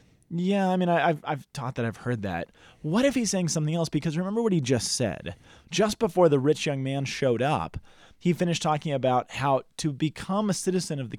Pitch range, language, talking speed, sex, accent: 125-175 Hz, English, 220 wpm, male, American